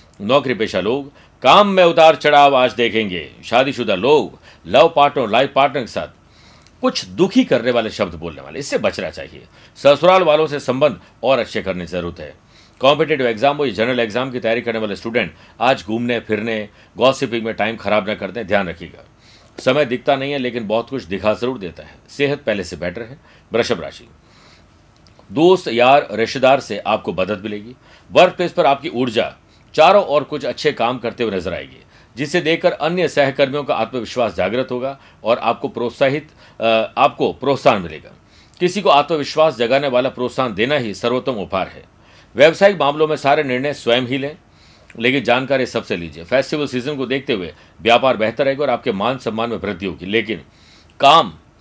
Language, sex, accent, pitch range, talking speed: Hindi, male, native, 110-145 Hz, 175 wpm